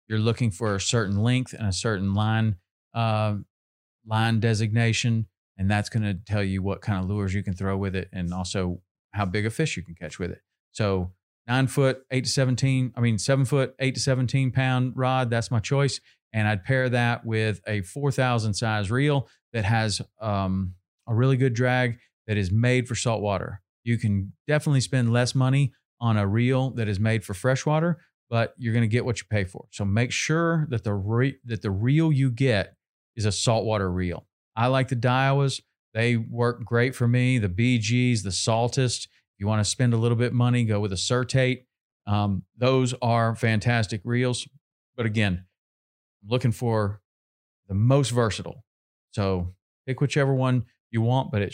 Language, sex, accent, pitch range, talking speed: English, male, American, 100-125 Hz, 190 wpm